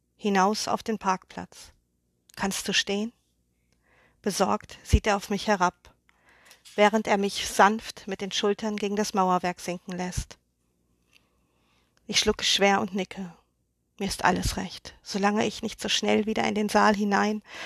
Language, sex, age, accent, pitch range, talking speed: German, female, 50-69, German, 175-210 Hz, 150 wpm